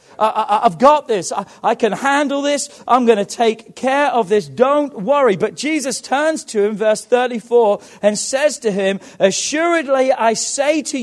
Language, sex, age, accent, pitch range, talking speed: English, male, 40-59, British, 200-270 Hz, 175 wpm